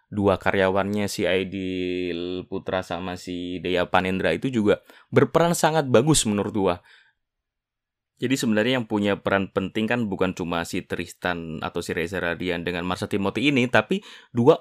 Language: Indonesian